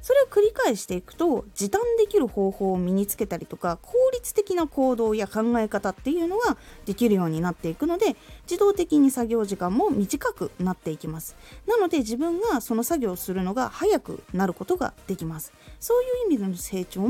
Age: 20-39